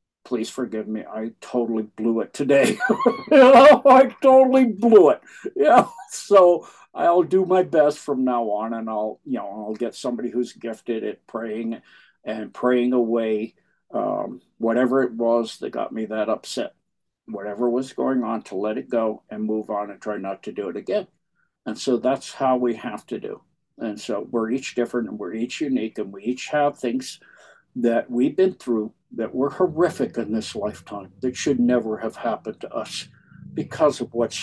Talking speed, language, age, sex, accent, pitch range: 180 wpm, English, 60-79, male, American, 115-170 Hz